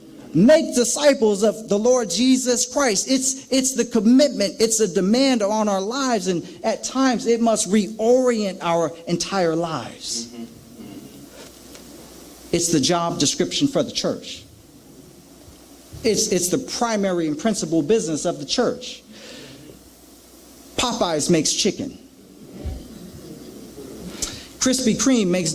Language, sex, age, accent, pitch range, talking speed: English, male, 40-59, American, 170-255 Hz, 115 wpm